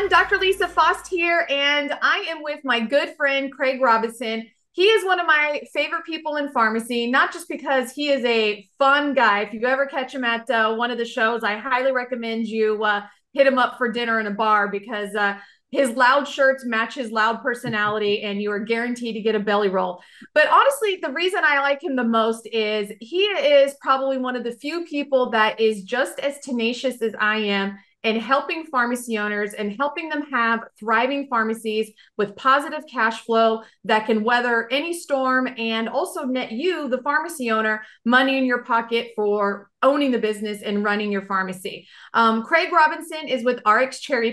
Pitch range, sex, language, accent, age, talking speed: 220-285 Hz, female, English, American, 30-49, 195 wpm